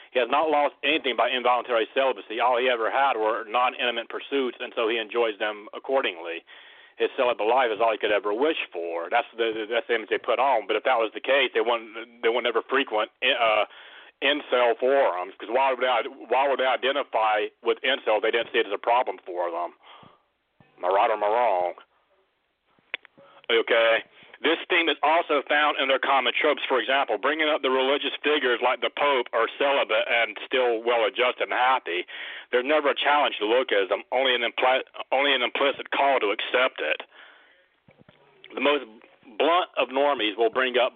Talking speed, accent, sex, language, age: 190 wpm, American, male, English, 40-59